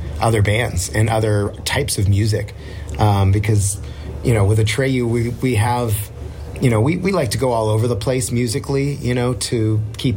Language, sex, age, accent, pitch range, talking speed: English, male, 30-49, American, 95-110 Hz, 190 wpm